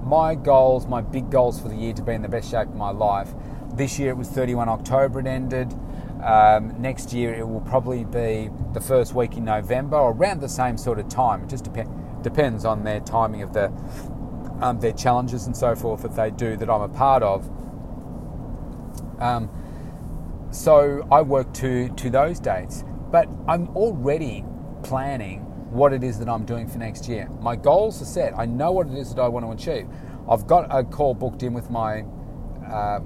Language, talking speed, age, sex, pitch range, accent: English, 200 wpm, 30-49, male, 110-135 Hz, Australian